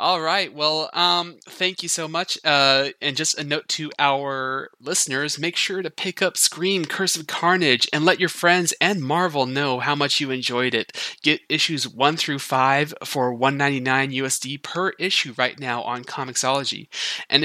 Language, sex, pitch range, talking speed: English, male, 125-150 Hz, 180 wpm